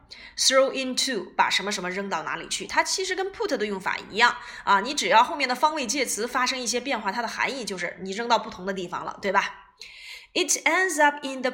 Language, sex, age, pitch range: Chinese, female, 20-39, 215-320 Hz